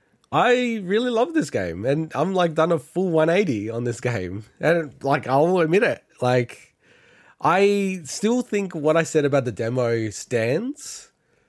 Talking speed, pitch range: 160 wpm, 110-150 Hz